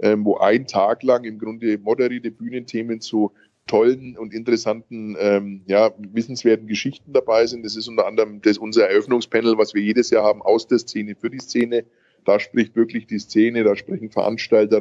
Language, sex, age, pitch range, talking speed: German, male, 20-39, 105-115 Hz, 180 wpm